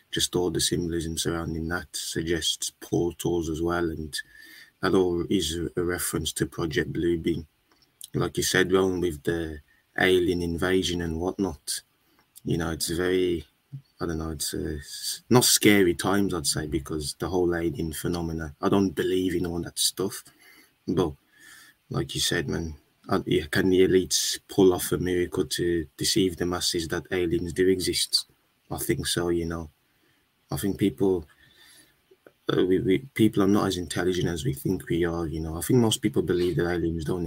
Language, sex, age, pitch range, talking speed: English, male, 20-39, 85-95 Hz, 170 wpm